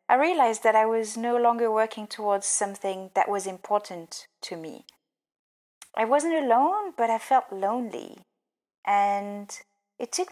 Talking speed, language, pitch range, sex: 145 wpm, English, 200-240 Hz, female